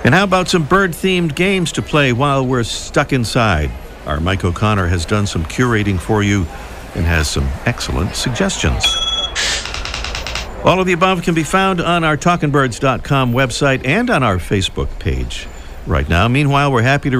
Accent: American